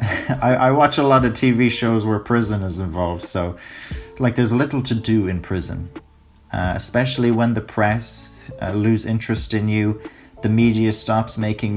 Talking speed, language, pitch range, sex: 175 wpm, English, 100-125 Hz, male